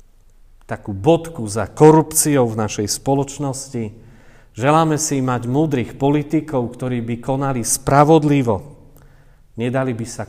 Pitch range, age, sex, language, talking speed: 115-150 Hz, 40-59, male, Slovak, 110 wpm